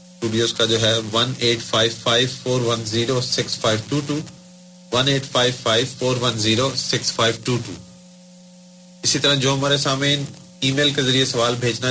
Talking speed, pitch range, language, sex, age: 105 wpm, 110-145 Hz, Urdu, male, 30-49